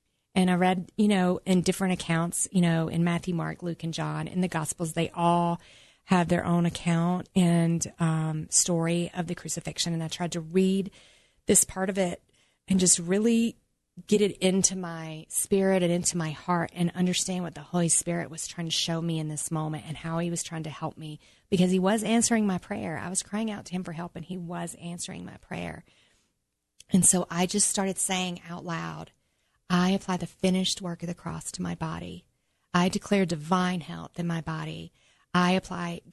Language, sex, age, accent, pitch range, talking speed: English, female, 30-49, American, 165-185 Hz, 205 wpm